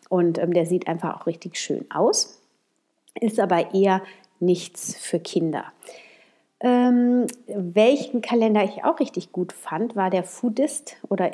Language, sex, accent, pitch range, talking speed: German, female, German, 180-230 Hz, 145 wpm